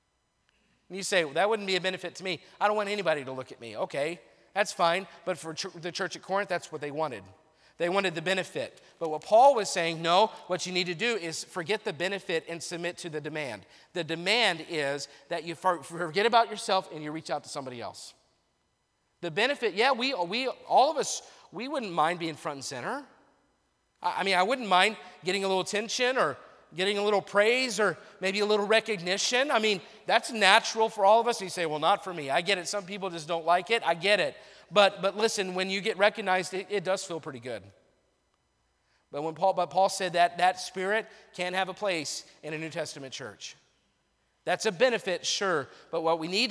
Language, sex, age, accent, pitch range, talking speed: English, male, 40-59, American, 155-200 Hz, 225 wpm